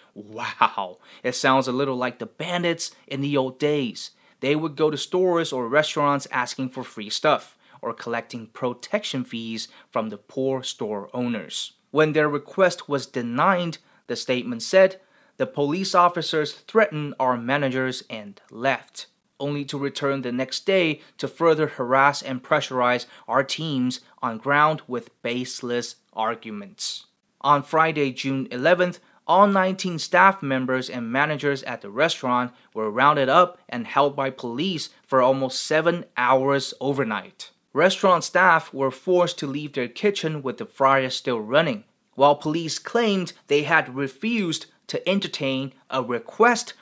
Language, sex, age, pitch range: Chinese, male, 30-49, 130-160 Hz